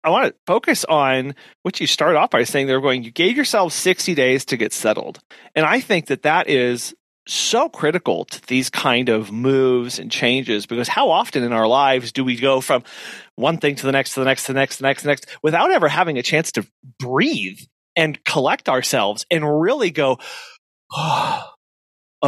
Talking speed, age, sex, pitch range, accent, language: 210 wpm, 30-49, male, 125-165 Hz, American, English